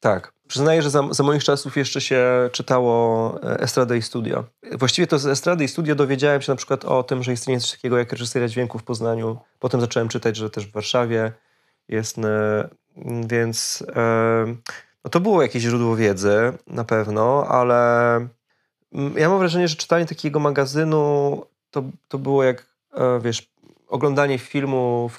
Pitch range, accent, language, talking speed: 115-140 Hz, native, Polish, 160 wpm